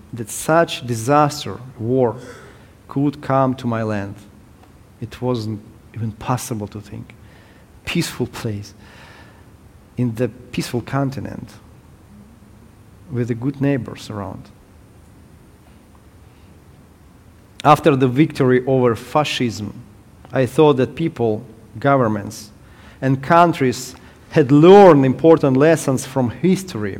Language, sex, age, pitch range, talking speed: English, male, 40-59, 110-140 Hz, 95 wpm